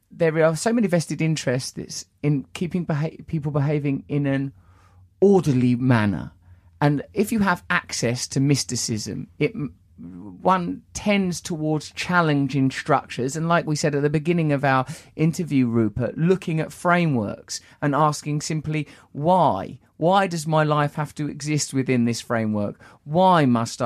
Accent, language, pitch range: British, English, 115-155 Hz